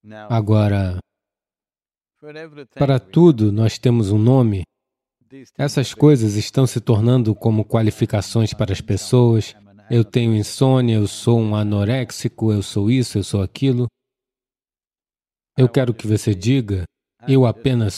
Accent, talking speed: Brazilian, 125 wpm